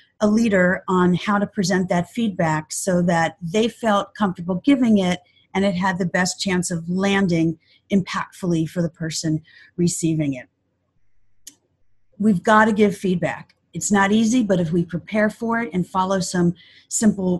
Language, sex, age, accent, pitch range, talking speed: English, female, 40-59, American, 175-230 Hz, 160 wpm